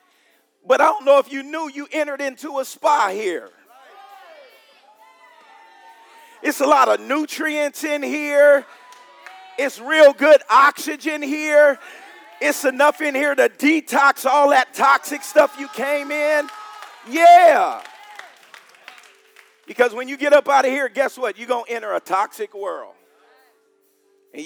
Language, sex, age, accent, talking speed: English, male, 40-59, American, 140 wpm